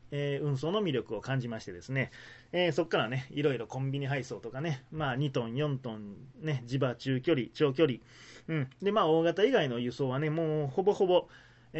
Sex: male